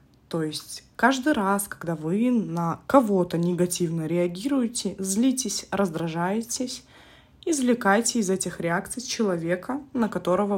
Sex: female